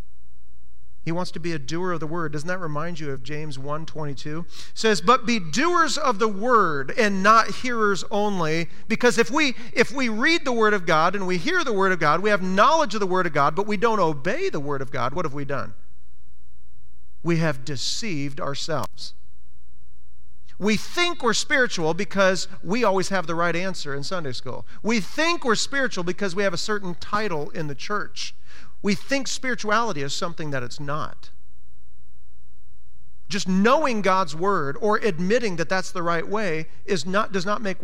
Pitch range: 150-225 Hz